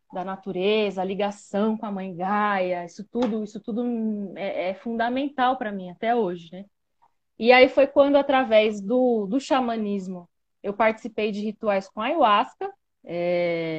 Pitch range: 205-280 Hz